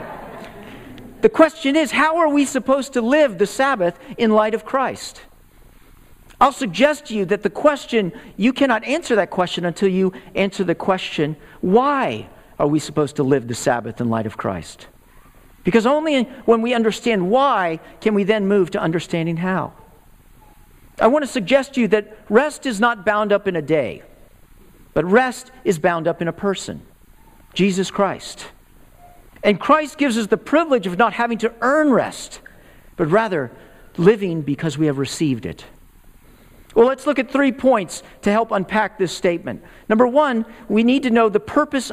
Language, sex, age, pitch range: English, male, 50-69, 190-260 Hz